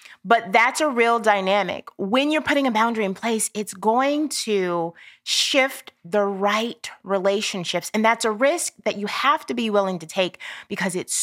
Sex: female